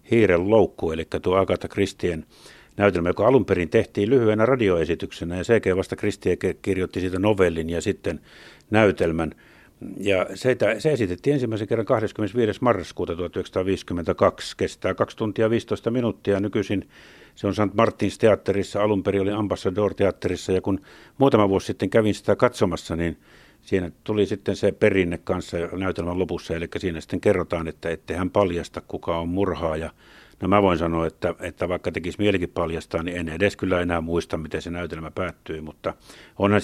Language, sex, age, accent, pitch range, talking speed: Finnish, male, 50-69, native, 85-105 Hz, 155 wpm